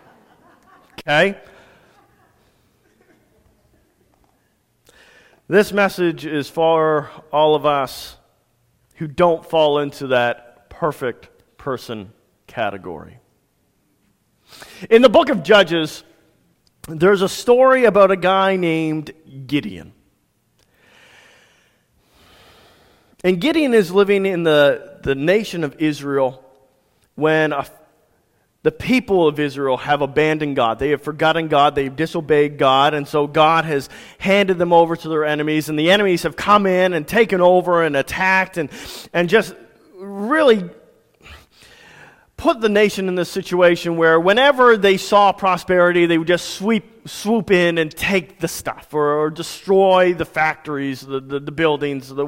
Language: English